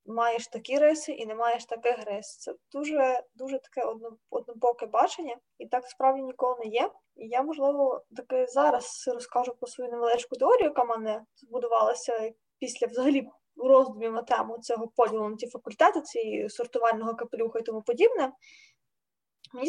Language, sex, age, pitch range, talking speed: Ukrainian, female, 20-39, 235-300 Hz, 150 wpm